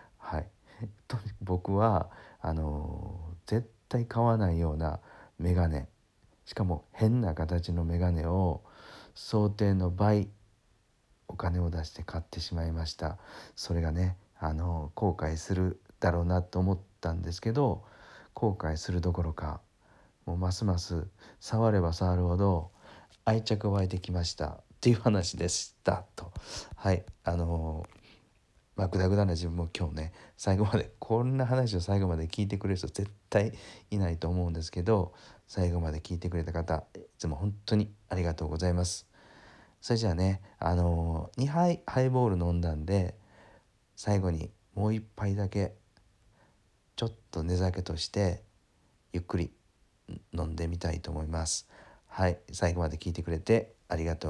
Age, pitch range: 40-59, 85-105 Hz